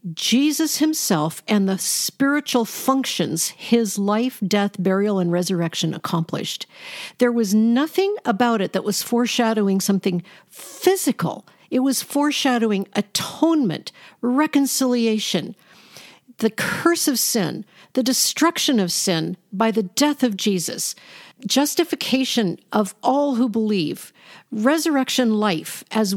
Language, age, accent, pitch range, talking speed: English, 50-69, American, 195-265 Hz, 110 wpm